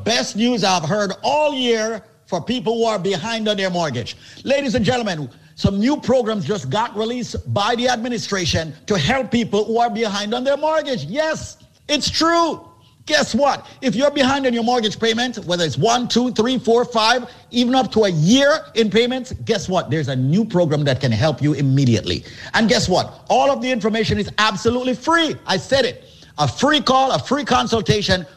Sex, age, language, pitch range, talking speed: male, 50-69, English, 175-250 Hz, 190 wpm